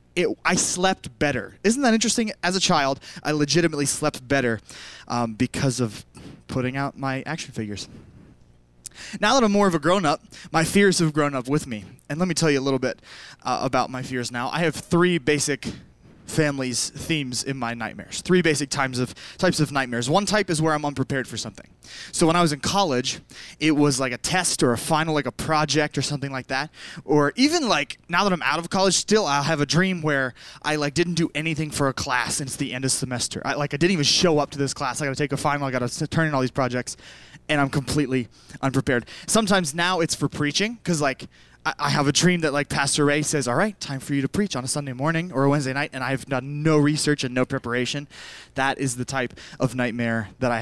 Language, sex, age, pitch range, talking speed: English, male, 20-39, 130-165 Hz, 235 wpm